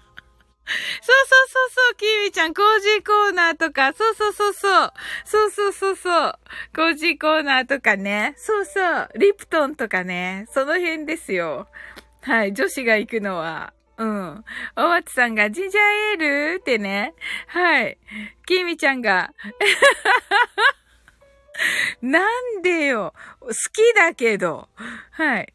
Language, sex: Japanese, female